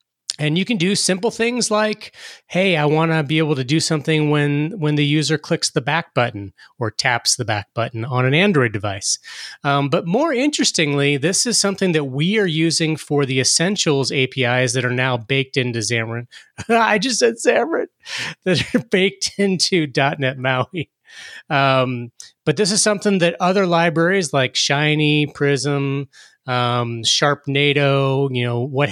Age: 30-49